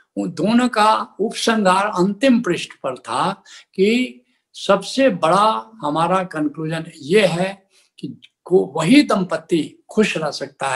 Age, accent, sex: 70-89, native, male